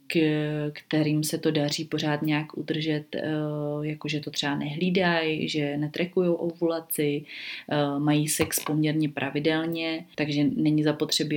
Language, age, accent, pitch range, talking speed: Czech, 30-49, native, 150-165 Hz, 120 wpm